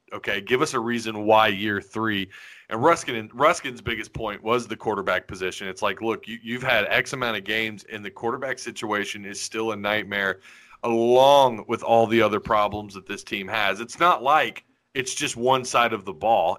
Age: 30-49